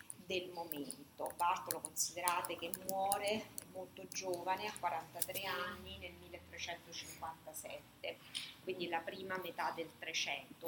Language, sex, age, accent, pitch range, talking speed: Italian, female, 30-49, native, 165-220 Hz, 105 wpm